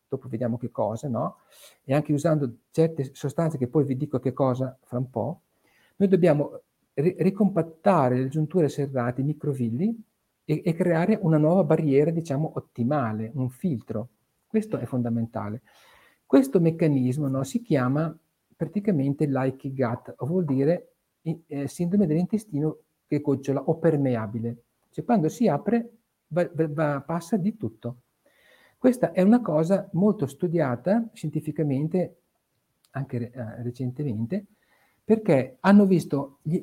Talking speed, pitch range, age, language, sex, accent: 135 wpm, 130-175 Hz, 50-69, Italian, male, native